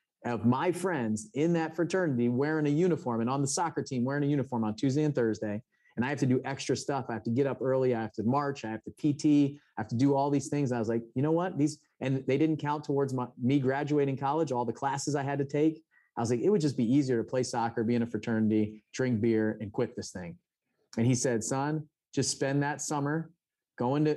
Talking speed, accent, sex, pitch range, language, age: 250 wpm, American, male, 115-145 Hz, English, 30-49